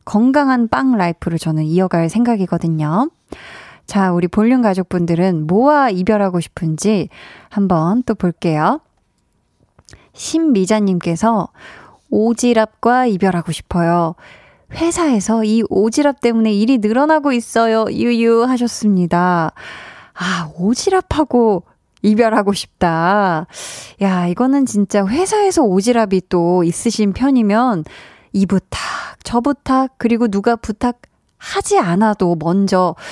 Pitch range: 180-245 Hz